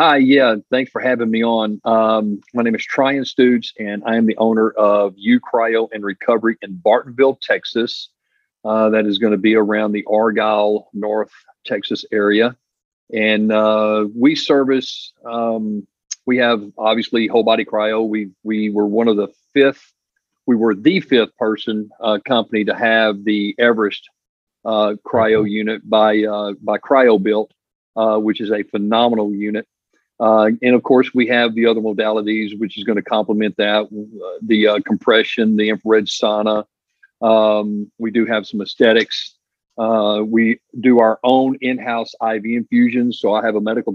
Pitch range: 105-115 Hz